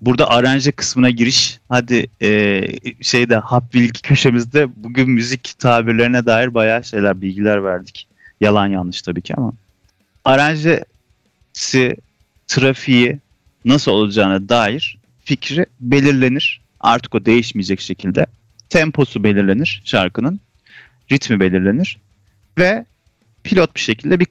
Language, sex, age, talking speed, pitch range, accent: Turkish, male, 40-59, 110 wpm, 105-150 Hz, native